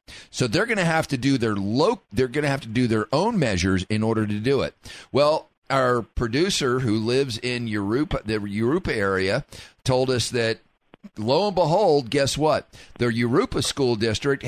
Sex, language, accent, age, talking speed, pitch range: male, English, American, 40-59, 185 wpm, 110-140 Hz